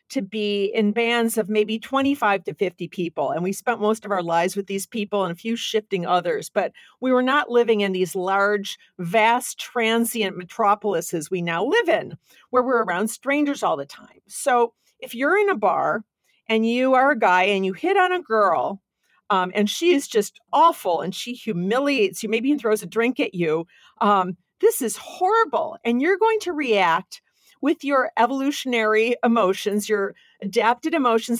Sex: female